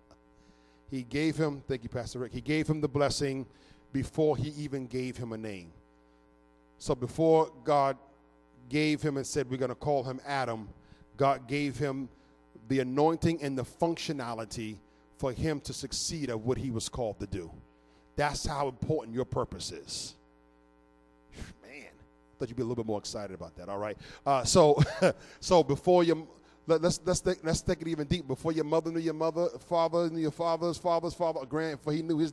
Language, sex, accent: English, male, American